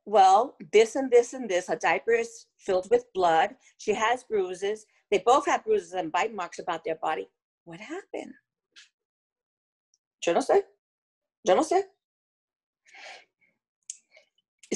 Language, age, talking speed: English, 50-69, 120 wpm